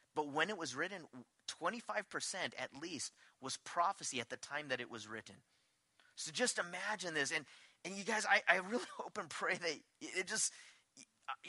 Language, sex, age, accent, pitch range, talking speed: English, male, 30-49, American, 145-185 Hz, 180 wpm